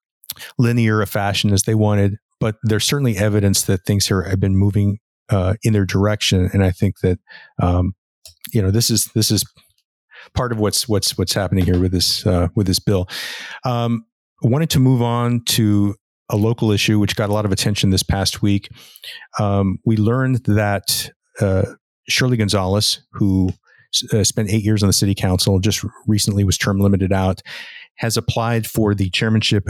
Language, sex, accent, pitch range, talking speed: English, male, American, 95-115 Hz, 185 wpm